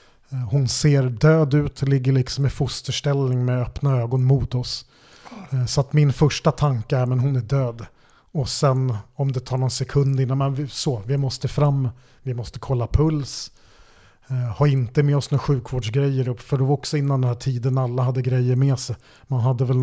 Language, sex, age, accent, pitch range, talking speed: Swedish, male, 30-49, native, 125-140 Hz, 190 wpm